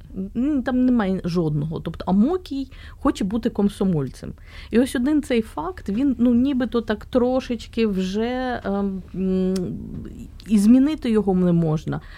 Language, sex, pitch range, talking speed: Ukrainian, female, 175-230 Hz, 120 wpm